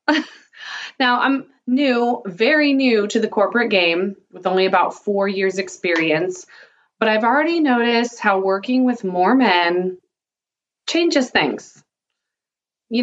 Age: 30-49